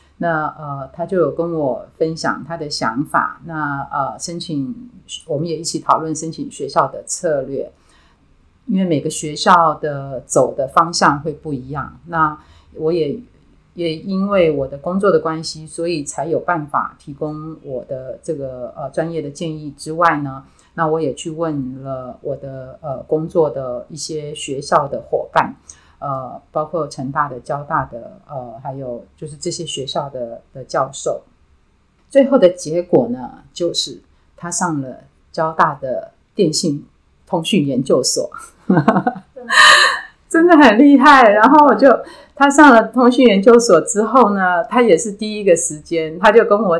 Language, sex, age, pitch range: Chinese, female, 30-49, 150-215 Hz